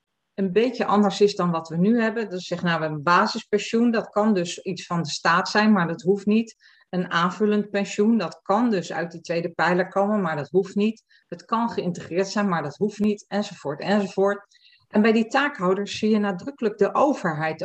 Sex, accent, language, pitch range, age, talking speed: female, Dutch, Dutch, 175-215 Hz, 40-59, 205 wpm